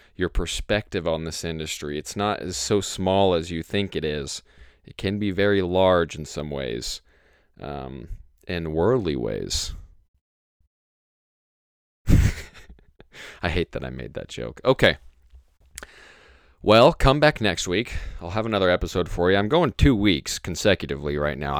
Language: English